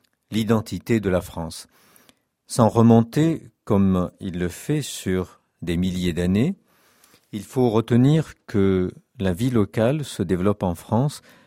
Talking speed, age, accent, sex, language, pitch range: 130 wpm, 50-69, French, male, French, 95-125 Hz